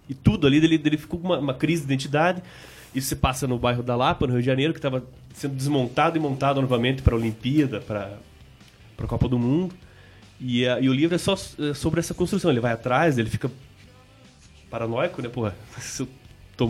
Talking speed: 205 wpm